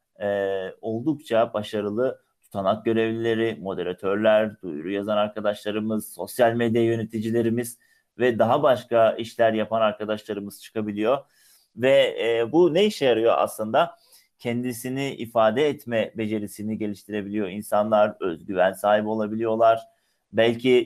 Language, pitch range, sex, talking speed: Turkish, 110-130 Hz, male, 100 wpm